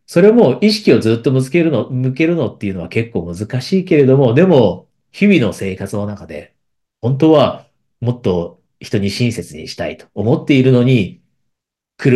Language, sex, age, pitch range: Japanese, male, 40-59, 90-125 Hz